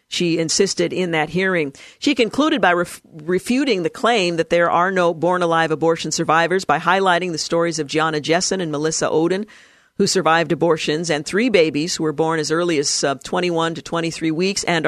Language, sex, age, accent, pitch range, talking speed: English, female, 50-69, American, 155-190 Hz, 185 wpm